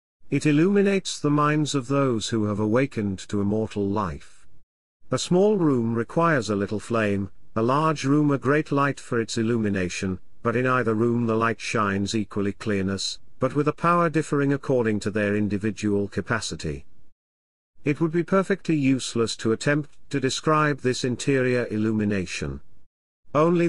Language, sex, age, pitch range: English, male, 50-69, 105-140 Hz